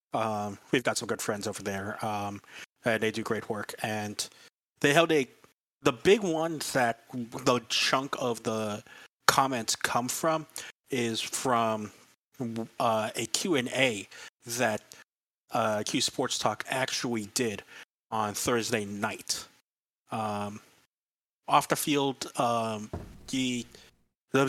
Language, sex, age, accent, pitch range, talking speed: English, male, 30-49, American, 105-130 Hz, 125 wpm